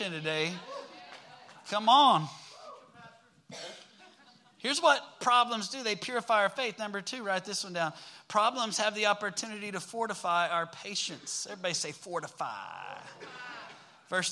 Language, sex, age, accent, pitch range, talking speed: English, male, 30-49, American, 165-200 Hz, 120 wpm